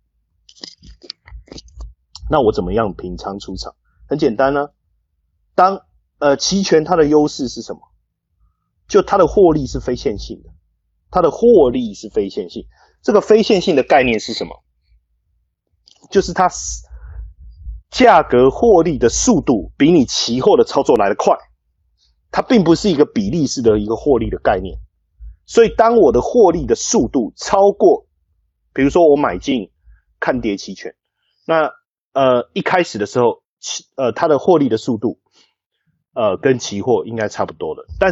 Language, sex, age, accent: Chinese, male, 30-49, native